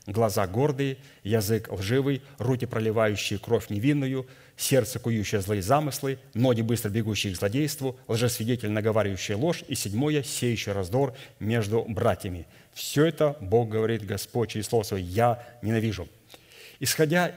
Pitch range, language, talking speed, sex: 110-140 Hz, Russian, 130 wpm, male